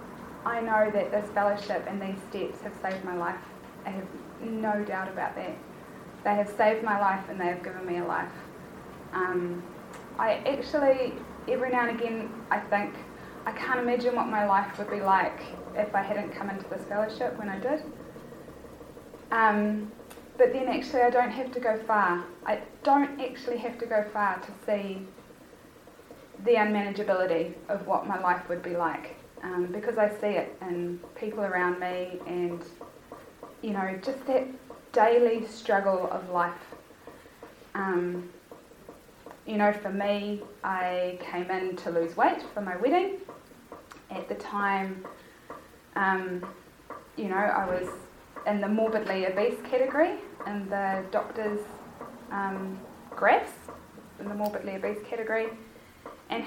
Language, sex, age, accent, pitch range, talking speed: English, female, 10-29, Australian, 190-225 Hz, 150 wpm